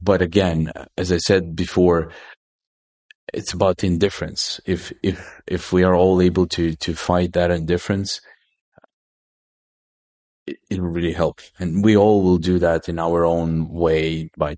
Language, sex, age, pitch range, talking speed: English, male, 30-49, 80-100 Hz, 150 wpm